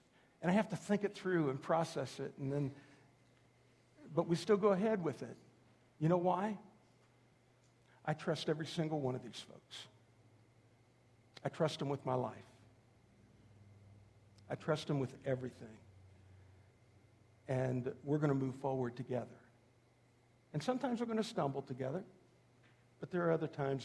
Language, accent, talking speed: English, American, 150 wpm